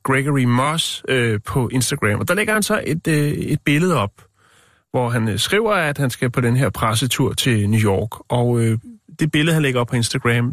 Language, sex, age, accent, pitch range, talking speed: Danish, male, 30-49, native, 110-145 Hz, 215 wpm